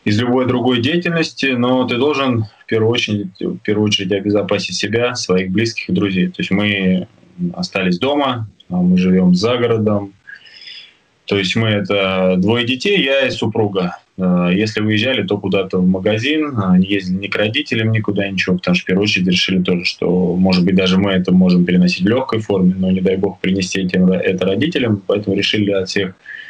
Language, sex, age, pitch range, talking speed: Russian, male, 20-39, 95-115 Hz, 185 wpm